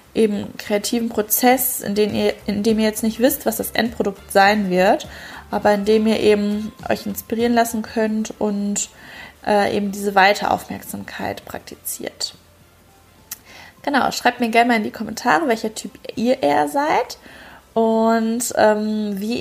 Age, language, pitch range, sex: 20-39, German, 200-230 Hz, female